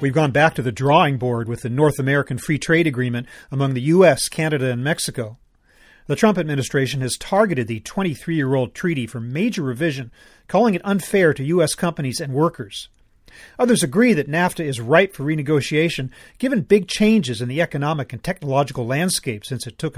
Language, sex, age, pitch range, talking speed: English, male, 40-59, 130-185 Hz, 175 wpm